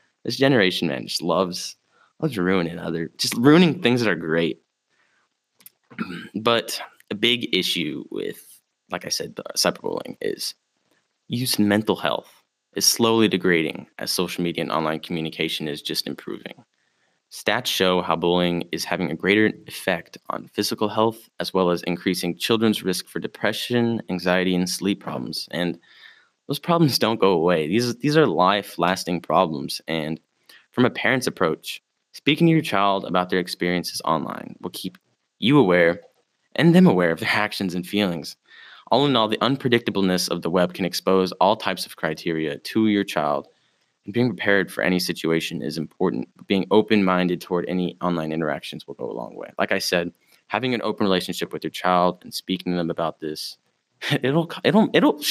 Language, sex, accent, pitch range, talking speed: English, male, American, 85-110 Hz, 170 wpm